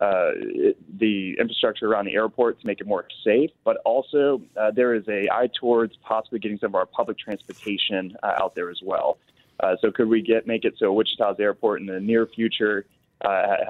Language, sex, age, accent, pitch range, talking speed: English, male, 20-39, American, 100-120 Hz, 200 wpm